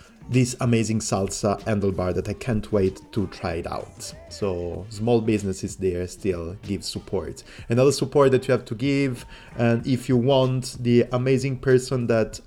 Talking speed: 165 wpm